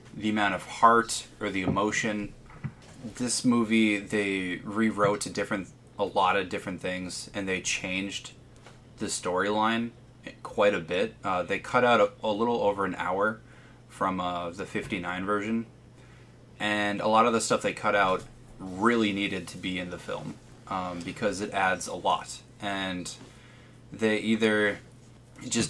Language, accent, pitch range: English, American, 95-115 Hz